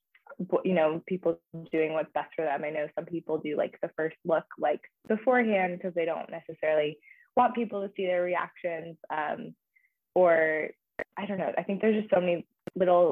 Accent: American